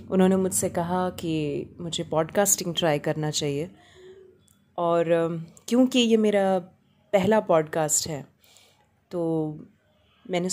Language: Hindi